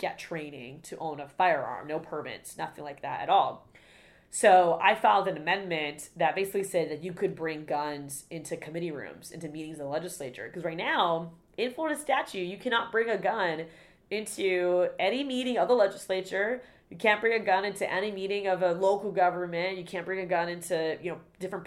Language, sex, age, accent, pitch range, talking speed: English, female, 20-39, American, 160-200 Hz, 200 wpm